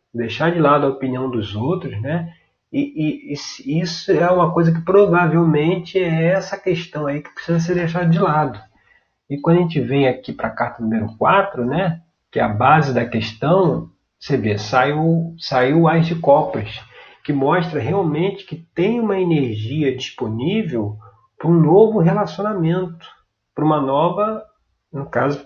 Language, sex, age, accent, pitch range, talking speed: Portuguese, male, 40-59, Brazilian, 125-175 Hz, 160 wpm